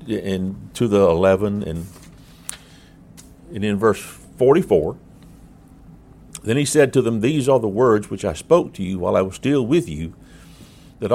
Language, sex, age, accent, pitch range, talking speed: English, male, 60-79, American, 90-120 Hz, 160 wpm